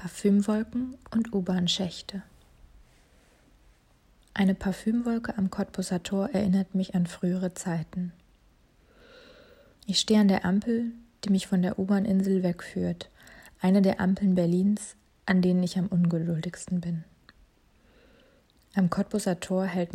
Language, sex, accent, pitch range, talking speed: German, female, German, 175-195 Hz, 115 wpm